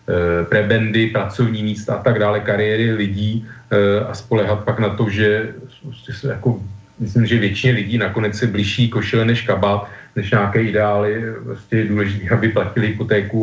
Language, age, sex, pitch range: Slovak, 40-59, male, 100-120 Hz